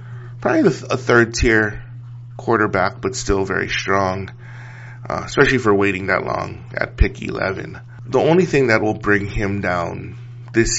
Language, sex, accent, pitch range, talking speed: English, male, American, 100-120 Hz, 145 wpm